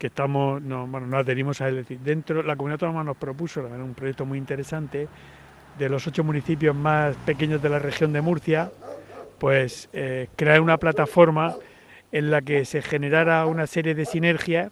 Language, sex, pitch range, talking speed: Spanish, male, 140-170 Hz, 180 wpm